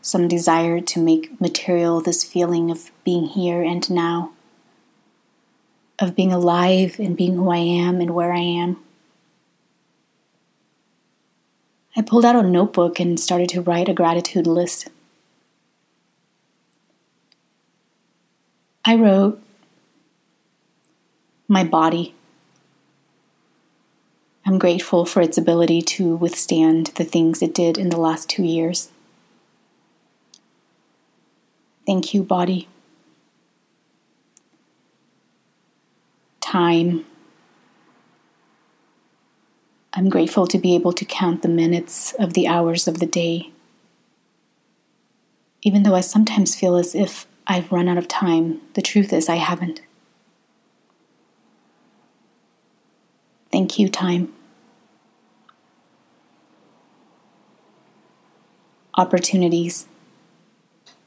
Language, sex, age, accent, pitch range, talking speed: English, female, 30-49, American, 170-190 Hz, 95 wpm